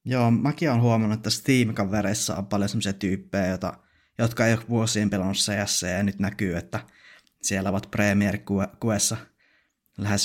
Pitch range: 100-110 Hz